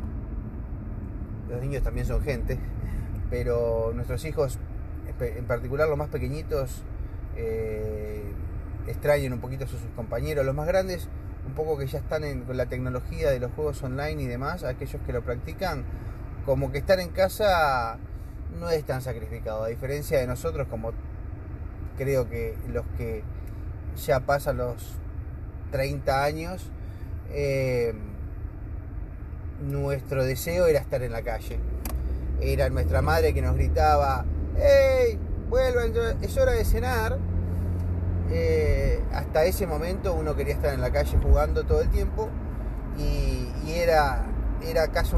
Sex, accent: male, Argentinian